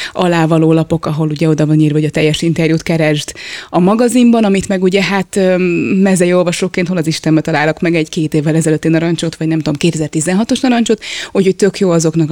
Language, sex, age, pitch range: Hungarian, female, 20-39, 165-200 Hz